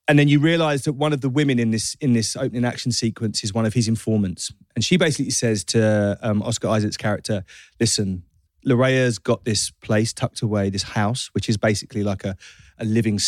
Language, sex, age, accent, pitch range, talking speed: English, male, 30-49, British, 105-125 Hz, 210 wpm